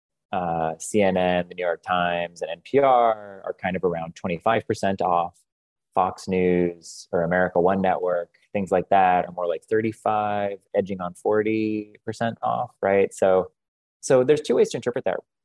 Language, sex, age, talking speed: English, male, 20-39, 155 wpm